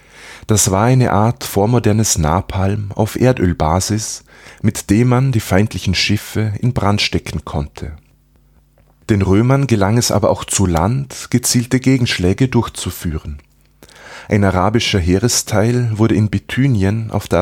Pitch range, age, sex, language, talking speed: 90-120 Hz, 30-49, male, German, 125 wpm